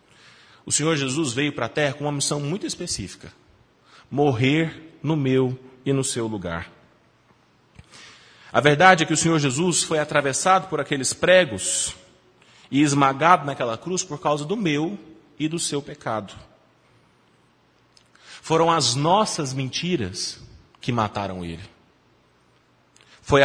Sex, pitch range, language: male, 130-170 Hz, Portuguese